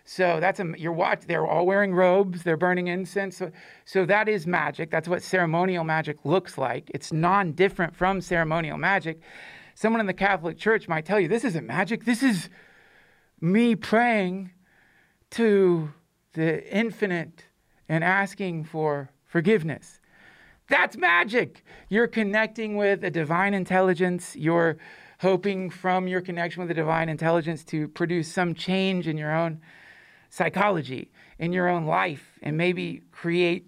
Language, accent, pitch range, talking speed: English, American, 160-195 Hz, 145 wpm